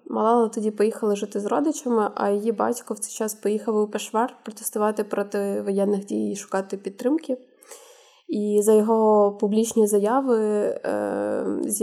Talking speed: 140 wpm